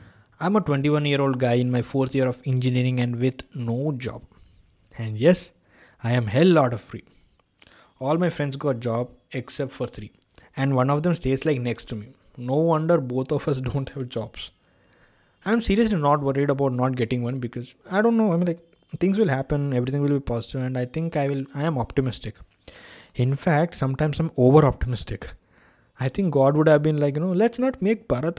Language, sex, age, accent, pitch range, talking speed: English, male, 20-39, Indian, 120-155 Hz, 205 wpm